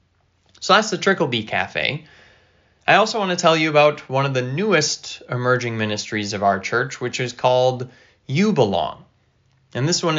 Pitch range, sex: 120-165 Hz, male